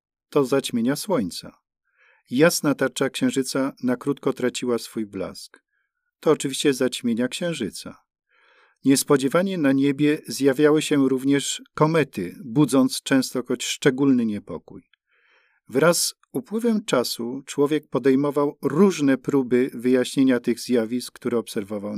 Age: 50-69